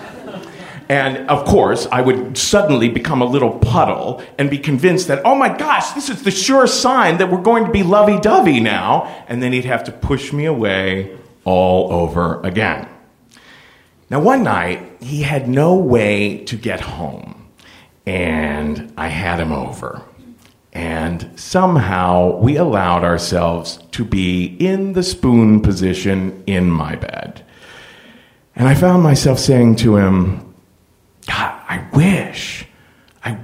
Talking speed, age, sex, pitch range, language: 145 wpm, 40-59, male, 95-150 Hz, English